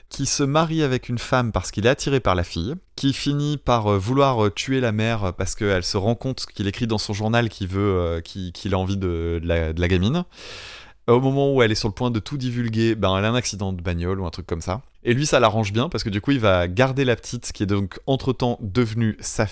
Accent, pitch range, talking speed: French, 95-125 Hz, 260 wpm